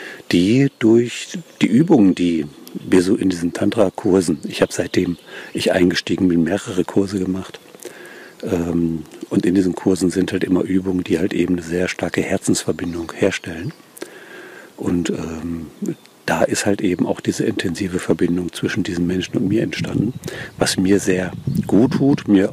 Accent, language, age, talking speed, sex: German, German, 50-69, 150 wpm, male